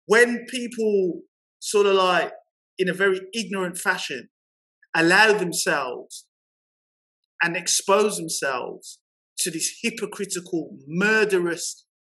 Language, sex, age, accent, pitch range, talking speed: English, male, 30-49, British, 170-215 Hz, 95 wpm